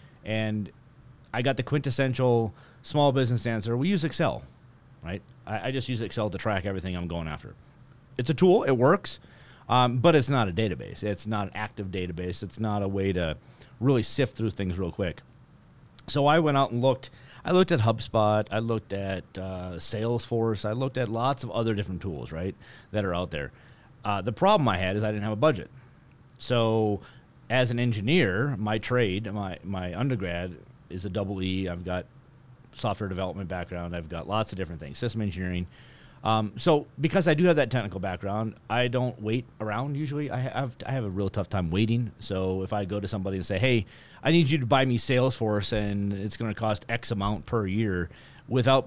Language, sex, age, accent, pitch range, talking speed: English, male, 30-49, American, 100-130 Hz, 200 wpm